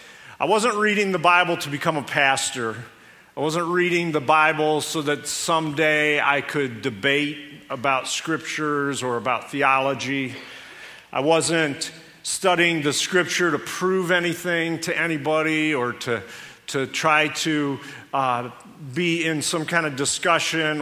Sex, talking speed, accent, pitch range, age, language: male, 135 wpm, American, 150-185 Hz, 50-69, English